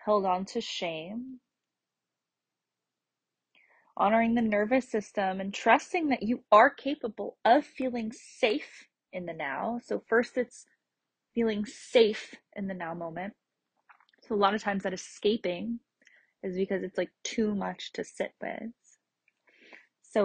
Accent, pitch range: American, 200-250 Hz